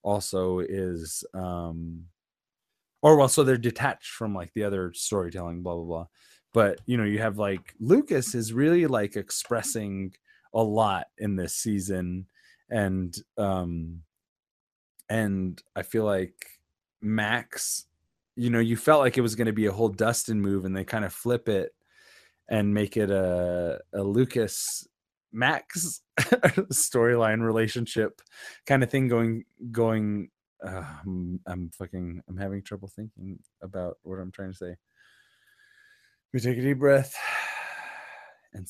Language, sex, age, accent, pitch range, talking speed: English, male, 20-39, American, 95-115 Hz, 145 wpm